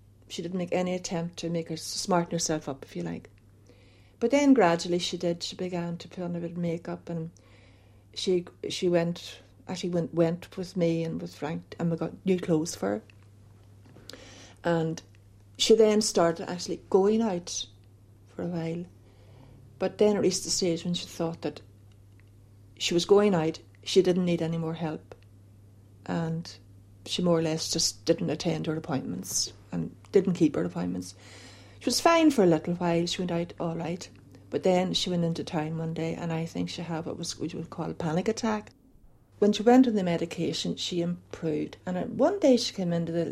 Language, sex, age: English, female, 60-79